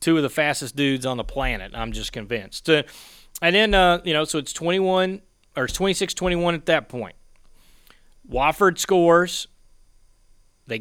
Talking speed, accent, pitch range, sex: 150 wpm, American, 115-155 Hz, male